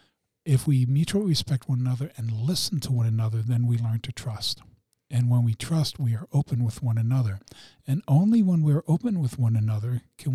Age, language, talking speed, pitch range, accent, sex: 50-69, English, 205 wpm, 120-140 Hz, American, male